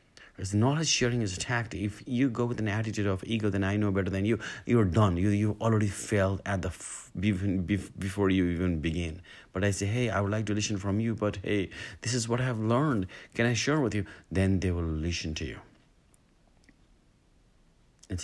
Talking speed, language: 210 wpm, English